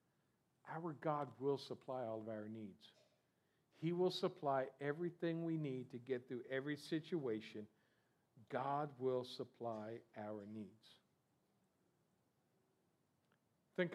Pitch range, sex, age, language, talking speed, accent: 135-160 Hz, male, 50-69, English, 110 wpm, American